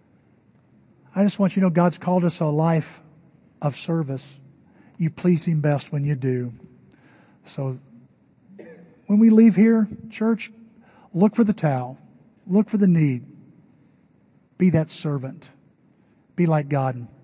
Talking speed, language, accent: 140 wpm, English, American